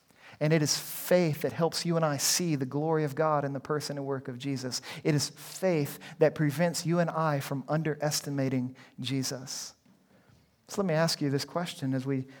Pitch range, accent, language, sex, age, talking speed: 135-160 Hz, American, English, male, 40-59, 200 wpm